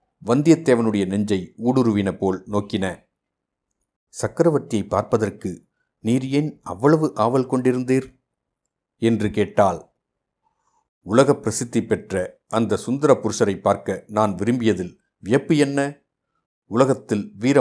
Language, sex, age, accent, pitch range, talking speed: Tamil, male, 50-69, native, 105-125 Hz, 90 wpm